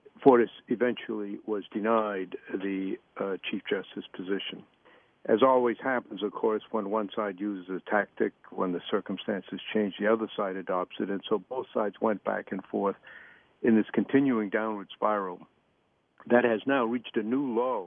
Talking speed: 165 wpm